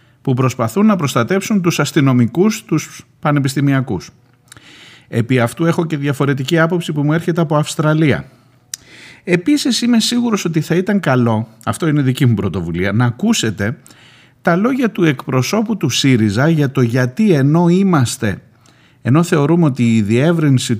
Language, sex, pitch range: Greek, male, 115-155 Hz